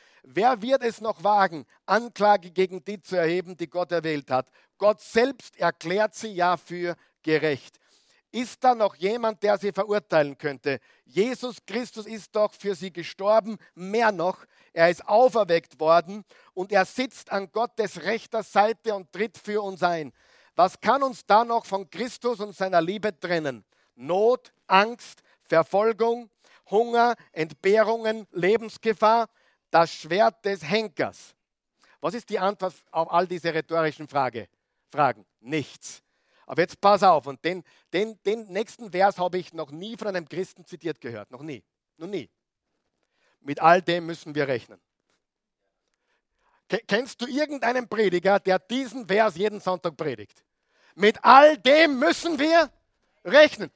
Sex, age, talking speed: male, 50-69, 145 wpm